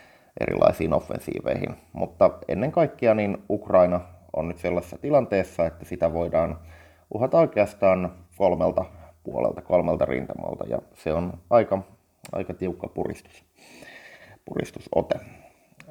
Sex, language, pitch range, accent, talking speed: male, Finnish, 85-105 Hz, native, 105 wpm